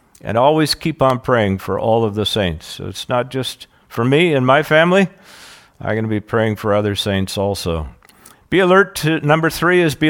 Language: English